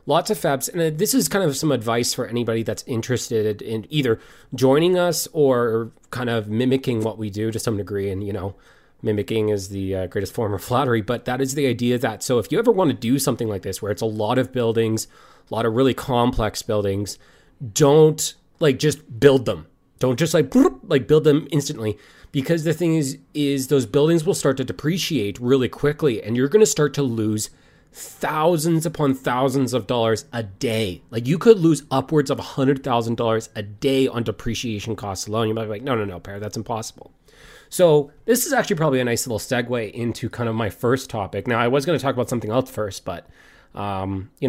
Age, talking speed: 30-49, 210 wpm